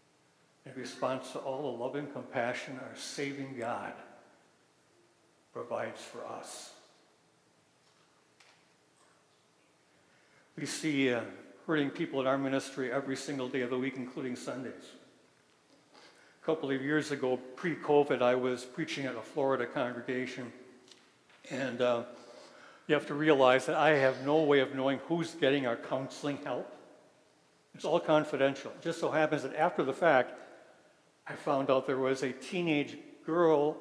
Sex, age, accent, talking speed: male, 60-79, American, 140 wpm